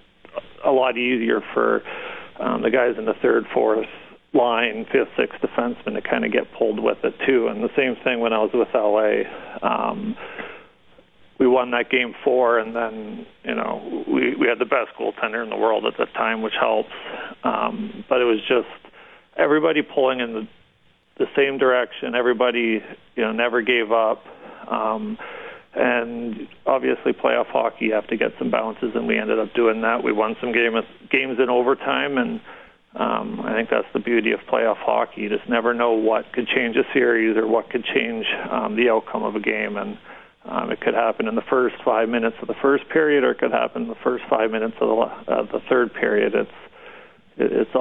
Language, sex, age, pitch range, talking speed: English, male, 40-59, 115-140 Hz, 200 wpm